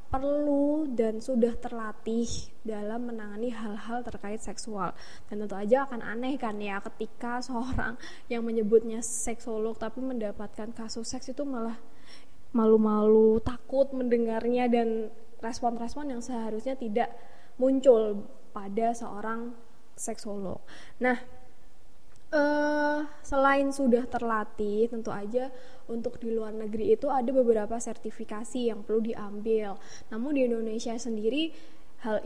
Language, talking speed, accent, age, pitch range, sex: Indonesian, 115 wpm, native, 10-29, 220-255 Hz, female